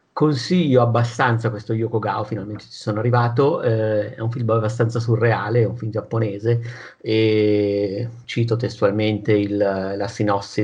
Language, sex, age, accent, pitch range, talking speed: Italian, male, 50-69, native, 105-120 Hz, 140 wpm